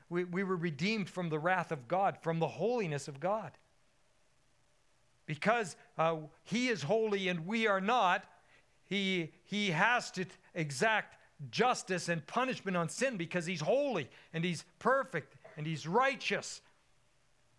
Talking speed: 145 wpm